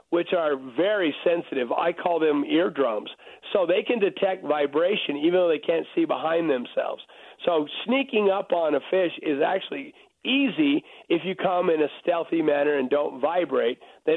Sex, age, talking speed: male, 50-69, 170 wpm